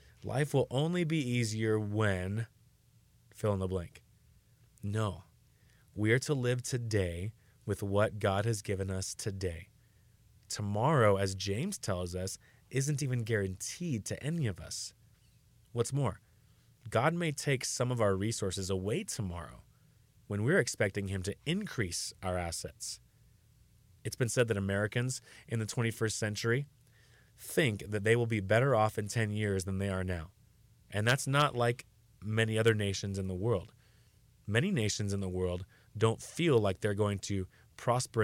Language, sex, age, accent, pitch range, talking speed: English, male, 30-49, American, 100-120 Hz, 155 wpm